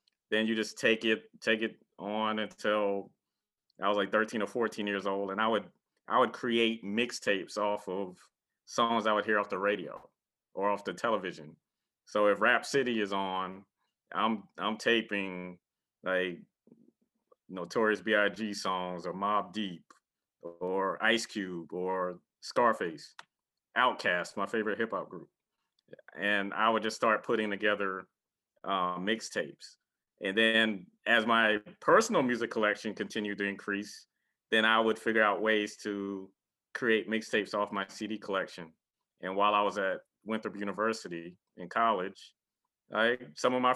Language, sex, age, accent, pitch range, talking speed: English, male, 30-49, American, 100-115 Hz, 150 wpm